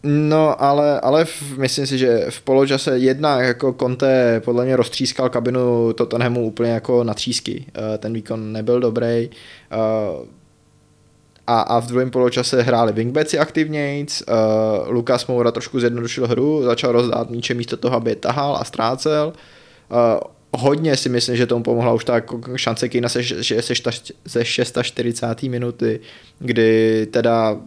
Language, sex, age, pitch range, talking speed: Czech, male, 20-39, 115-130 Hz, 135 wpm